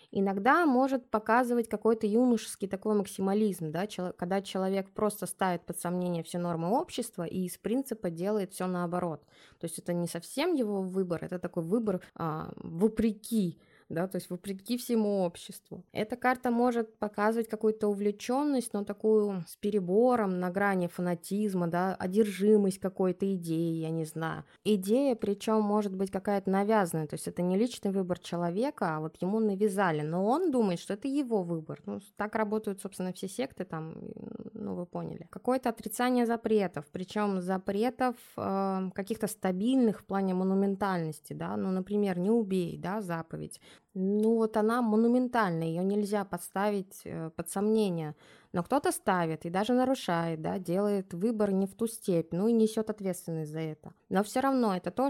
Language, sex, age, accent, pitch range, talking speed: Russian, female, 20-39, native, 180-220 Hz, 160 wpm